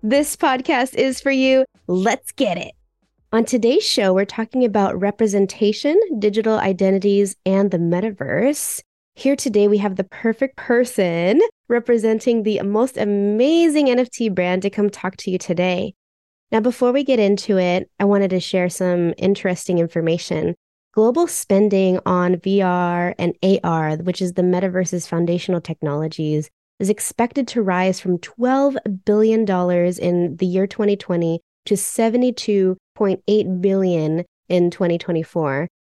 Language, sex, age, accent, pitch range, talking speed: English, female, 20-39, American, 180-230 Hz, 135 wpm